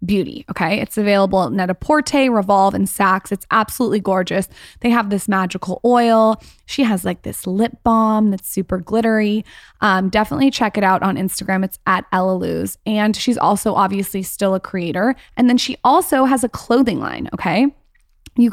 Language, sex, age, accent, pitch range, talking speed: English, female, 20-39, American, 195-230 Hz, 175 wpm